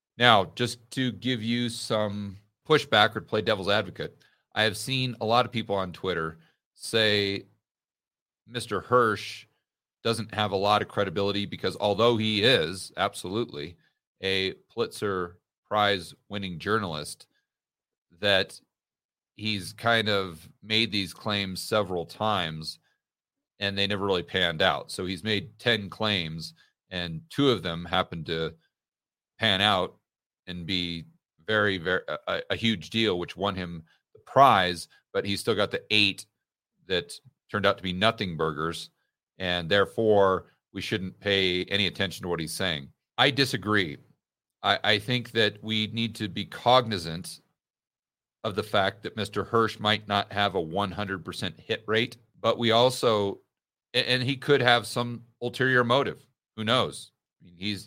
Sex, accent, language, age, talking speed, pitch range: male, American, English, 40-59, 150 wpm, 95-115 Hz